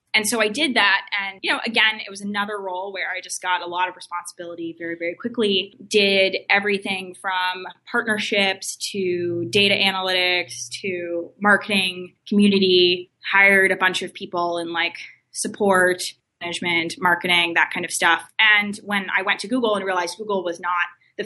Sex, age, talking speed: female, 20-39, 170 wpm